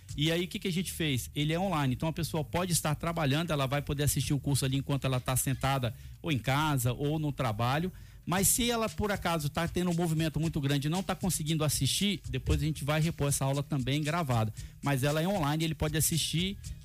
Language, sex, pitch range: Portuguese, male, 135-165 Hz